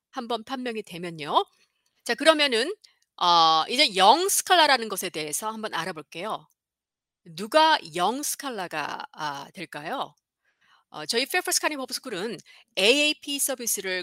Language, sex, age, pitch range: Korean, female, 40-59, 190-305 Hz